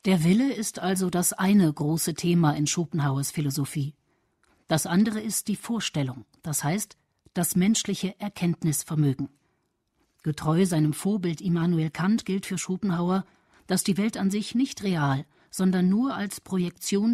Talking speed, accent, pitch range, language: 140 wpm, German, 160-200 Hz, German